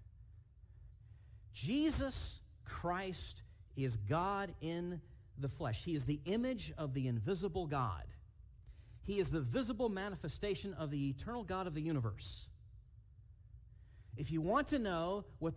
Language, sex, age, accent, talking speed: English, male, 40-59, American, 125 wpm